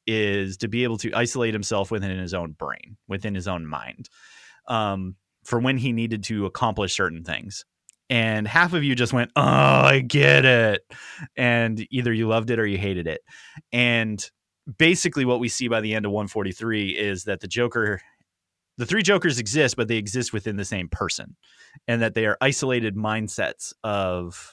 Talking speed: 185 wpm